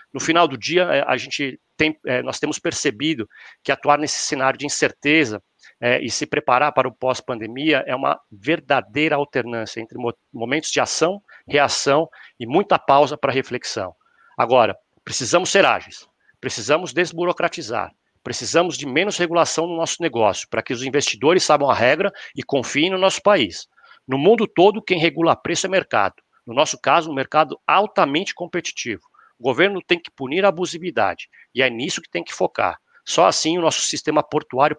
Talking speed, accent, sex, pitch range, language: 165 wpm, Brazilian, male, 130-165 Hz, Portuguese